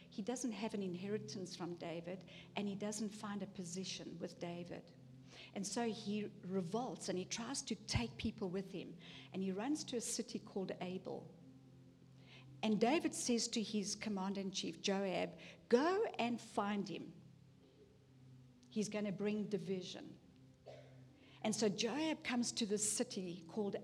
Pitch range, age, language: 170-225 Hz, 50-69, English